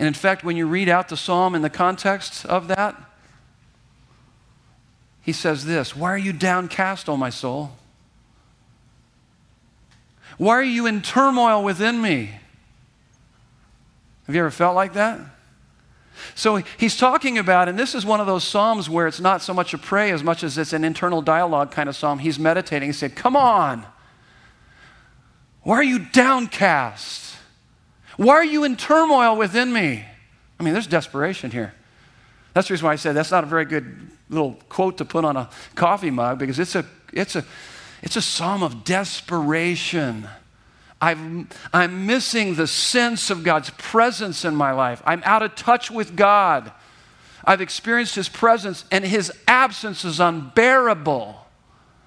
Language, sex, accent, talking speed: English, male, American, 165 wpm